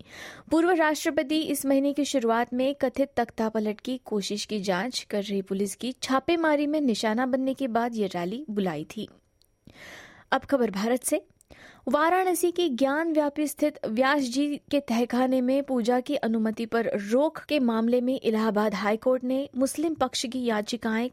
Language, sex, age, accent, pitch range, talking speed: Hindi, female, 20-39, native, 225-285 Hz, 160 wpm